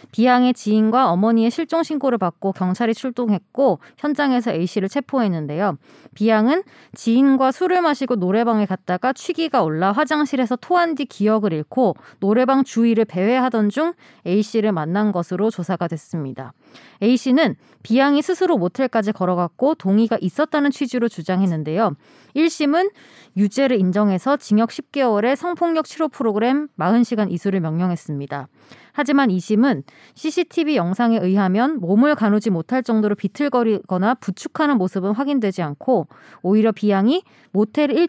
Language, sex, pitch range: Korean, female, 190-275 Hz